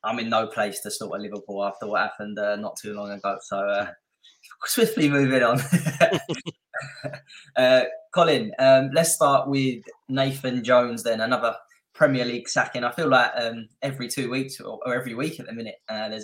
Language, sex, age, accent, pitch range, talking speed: English, male, 20-39, British, 110-130 Hz, 180 wpm